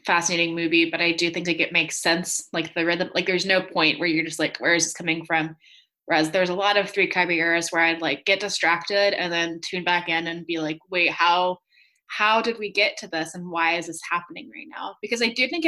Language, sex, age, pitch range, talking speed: English, female, 20-39, 165-190 Hz, 250 wpm